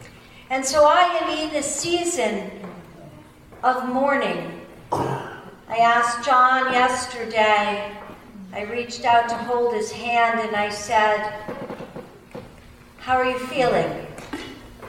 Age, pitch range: 50-69, 210-255 Hz